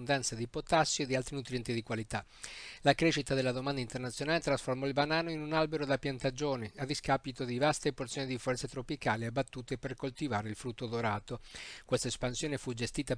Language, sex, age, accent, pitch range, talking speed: Italian, male, 50-69, native, 125-145 Hz, 180 wpm